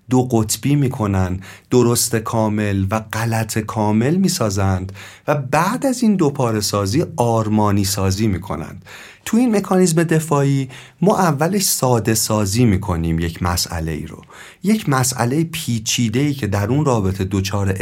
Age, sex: 40-59, male